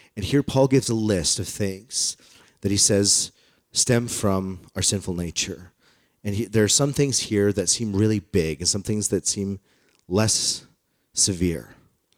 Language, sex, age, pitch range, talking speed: English, male, 40-59, 90-110 Hz, 170 wpm